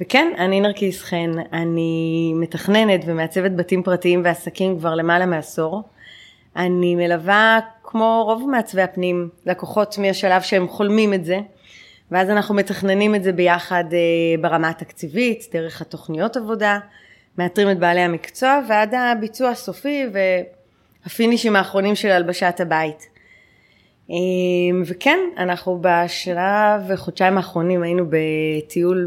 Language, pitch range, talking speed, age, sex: Hebrew, 170-200 Hz, 115 wpm, 20-39, female